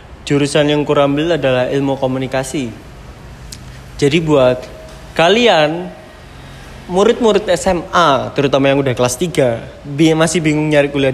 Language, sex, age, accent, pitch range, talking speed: Indonesian, male, 20-39, native, 130-160 Hz, 115 wpm